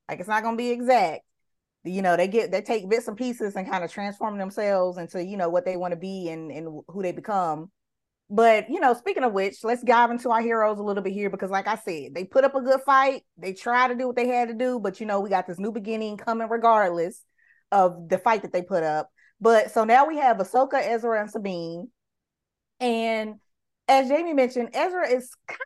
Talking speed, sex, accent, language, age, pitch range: 235 wpm, female, American, English, 20-39, 190-245 Hz